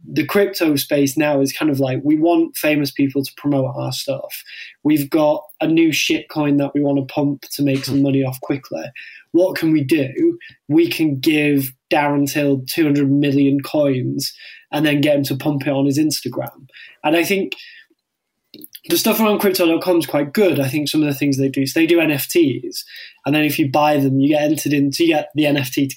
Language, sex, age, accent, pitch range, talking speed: English, male, 10-29, British, 140-165 Hz, 215 wpm